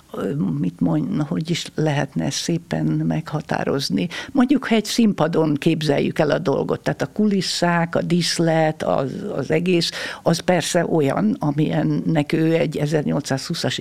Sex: female